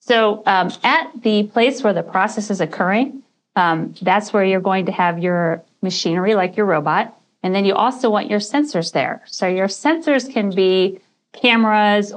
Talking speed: 180 wpm